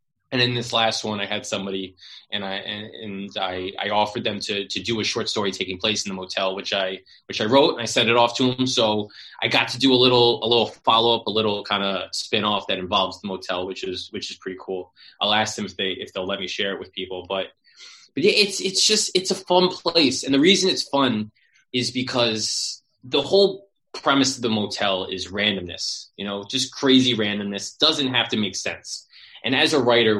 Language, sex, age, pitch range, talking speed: English, male, 20-39, 105-130 Hz, 230 wpm